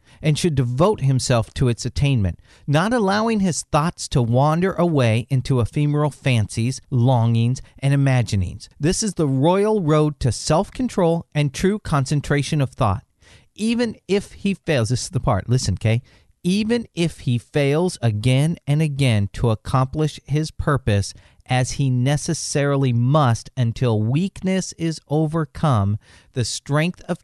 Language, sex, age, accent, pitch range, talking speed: English, male, 40-59, American, 115-165 Hz, 140 wpm